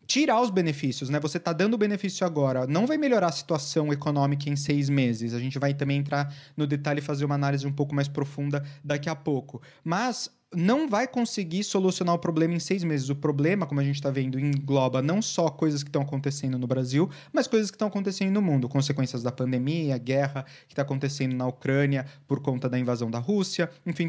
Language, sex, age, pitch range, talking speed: Portuguese, male, 20-39, 135-180 Hz, 215 wpm